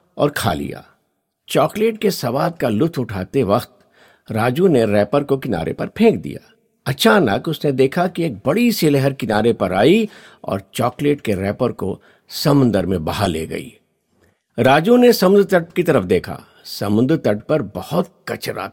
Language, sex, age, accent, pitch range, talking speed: Hindi, male, 50-69, native, 120-185 Hz, 165 wpm